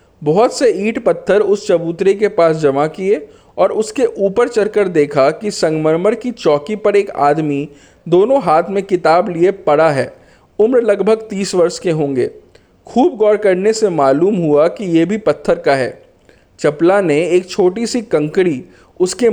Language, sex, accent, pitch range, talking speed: Hindi, male, native, 145-215 Hz, 170 wpm